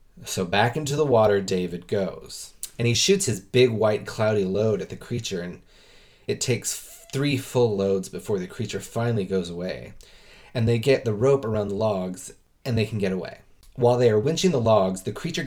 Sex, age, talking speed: male, 30-49, 200 wpm